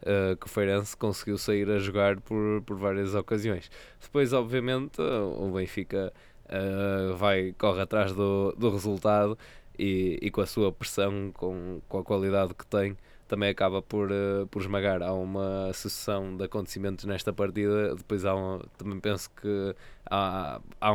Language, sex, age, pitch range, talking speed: Portuguese, male, 20-39, 95-105 Hz, 160 wpm